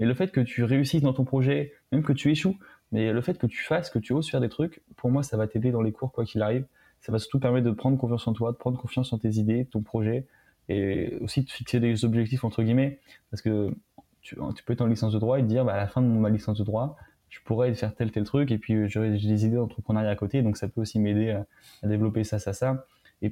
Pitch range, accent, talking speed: 110-130 Hz, French, 285 wpm